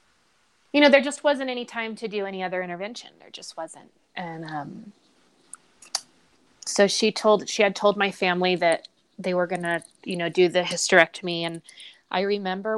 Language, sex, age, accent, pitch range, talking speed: English, female, 20-39, American, 175-225 Hz, 175 wpm